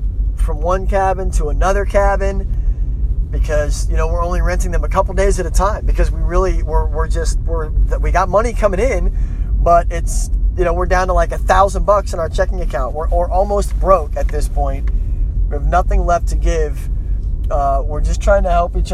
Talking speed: 210 wpm